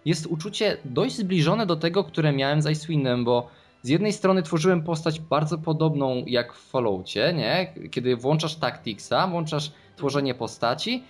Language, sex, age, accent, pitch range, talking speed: Polish, male, 20-39, native, 130-165 Hz, 150 wpm